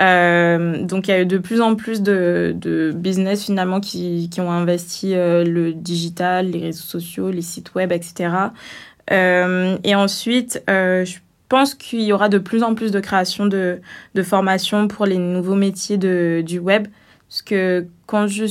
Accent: French